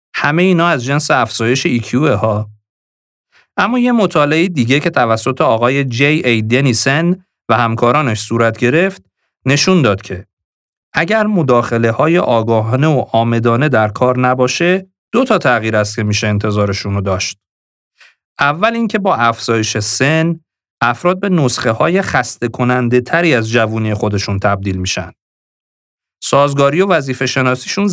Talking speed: 130 wpm